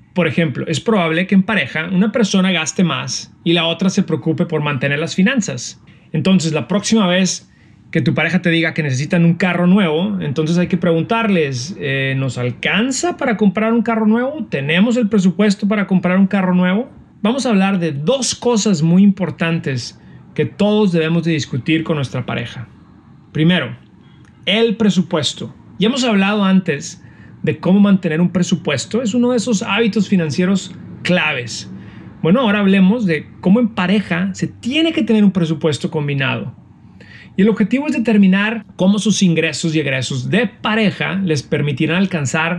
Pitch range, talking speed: 160-205 Hz, 165 wpm